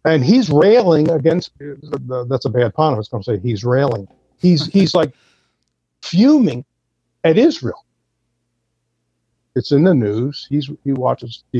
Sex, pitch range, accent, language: male, 125-170 Hz, American, English